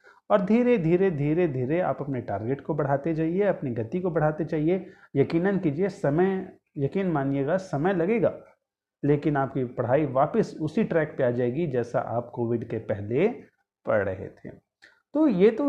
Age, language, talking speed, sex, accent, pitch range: 30-49, Hindi, 165 wpm, male, native, 125-175 Hz